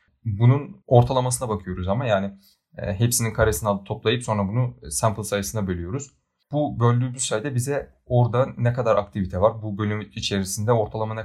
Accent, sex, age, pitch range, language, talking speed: native, male, 30-49, 100-120 Hz, Turkish, 145 wpm